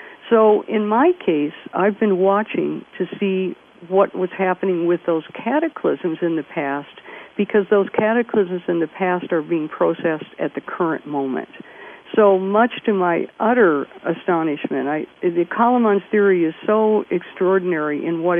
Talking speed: 145 wpm